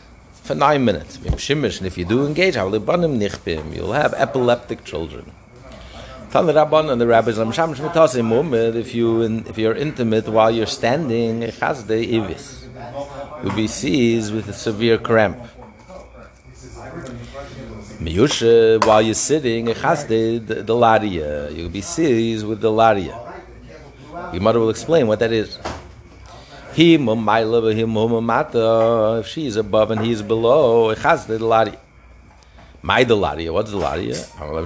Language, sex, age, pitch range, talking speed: English, male, 50-69, 110-135 Hz, 110 wpm